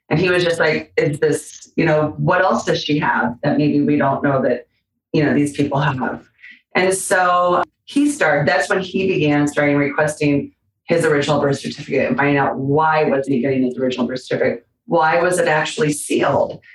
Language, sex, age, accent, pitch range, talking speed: English, female, 30-49, American, 155-205 Hz, 195 wpm